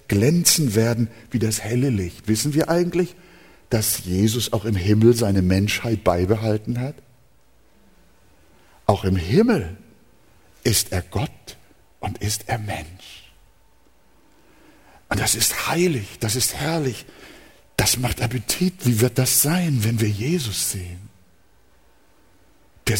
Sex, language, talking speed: male, German, 125 wpm